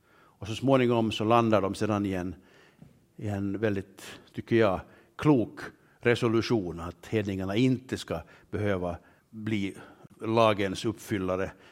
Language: Swedish